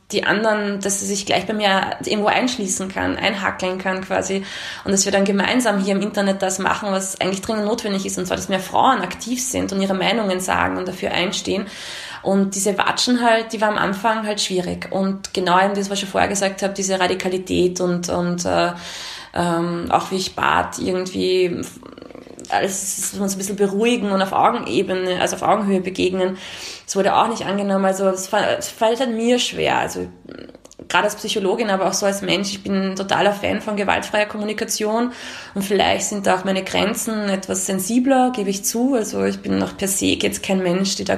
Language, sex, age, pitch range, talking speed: German, female, 20-39, 190-220 Hz, 200 wpm